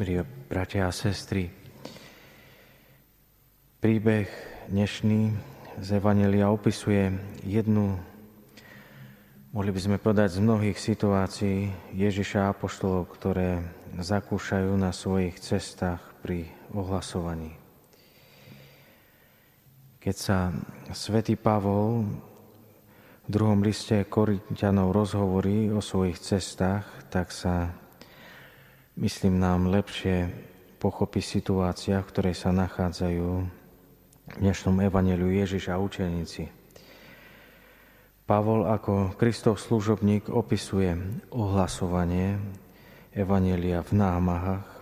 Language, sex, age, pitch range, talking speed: Slovak, male, 30-49, 90-105 Hz, 85 wpm